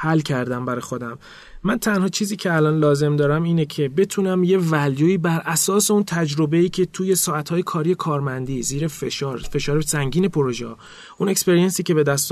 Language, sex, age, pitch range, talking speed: Persian, male, 30-49, 140-180 Hz, 170 wpm